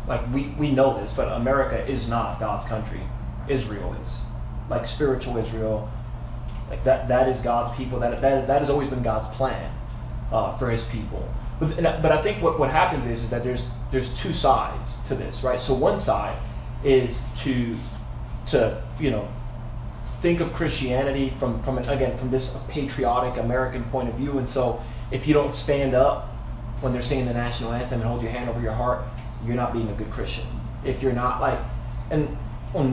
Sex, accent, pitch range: male, American, 115-135 Hz